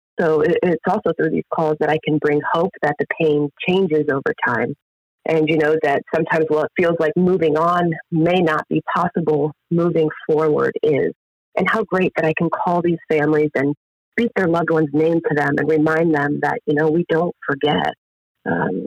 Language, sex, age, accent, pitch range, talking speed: English, female, 30-49, American, 155-175 Hz, 195 wpm